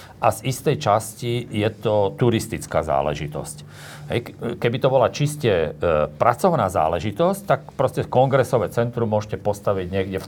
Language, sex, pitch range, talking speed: Slovak, male, 100-120 Hz, 130 wpm